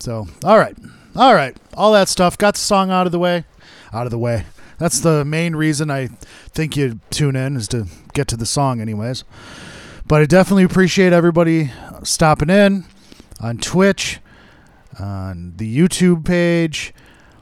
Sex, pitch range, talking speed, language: male, 115-165 Hz, 165 wpm, English